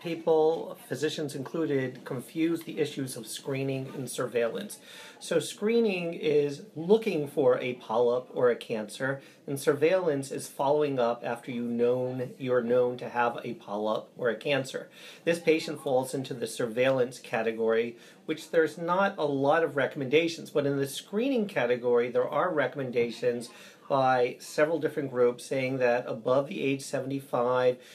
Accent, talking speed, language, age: American, 150 wpm, English, 40-59